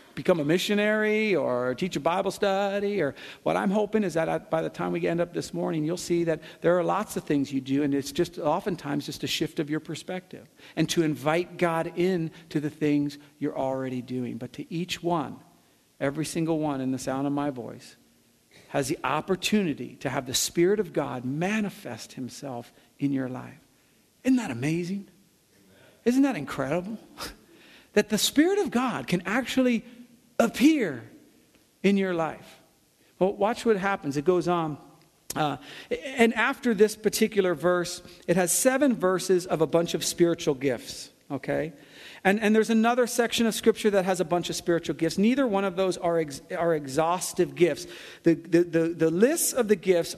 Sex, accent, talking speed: male, American, 180 wpm